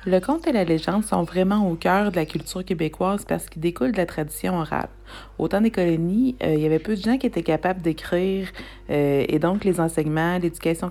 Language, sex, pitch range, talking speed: French, female, 145-180 Hz, 225 wpm